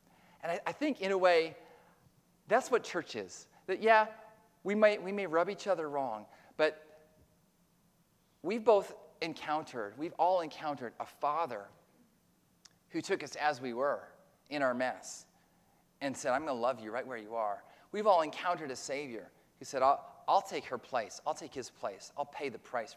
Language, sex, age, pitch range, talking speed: English, male, 30-49, 130-180 Hz, 180 wpm